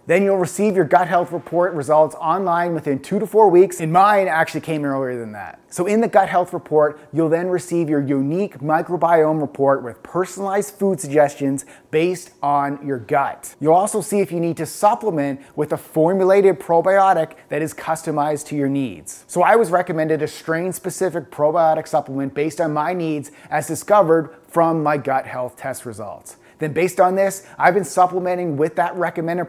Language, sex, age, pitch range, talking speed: English, male, 30-49, 150-185 Hz, 185 wpm